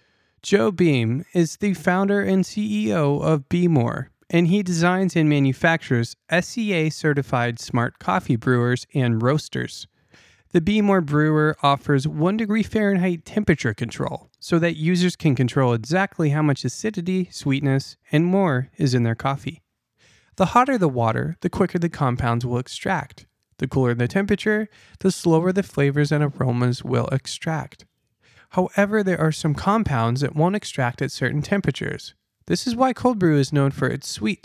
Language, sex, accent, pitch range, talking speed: English, male, American, 135-185 Hz, 155 wpm